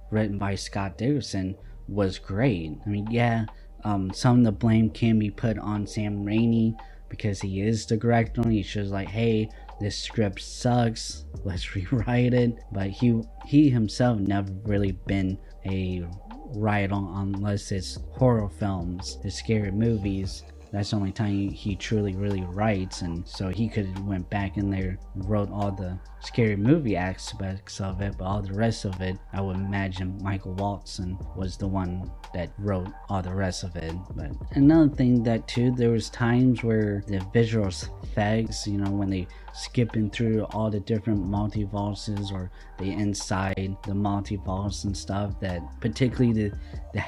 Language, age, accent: English, 20-39, American